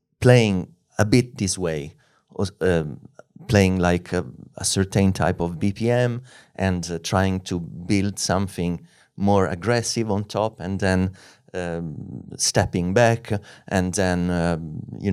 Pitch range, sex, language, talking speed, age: 90-105 Hz, male, English, 130 wpm, 30-49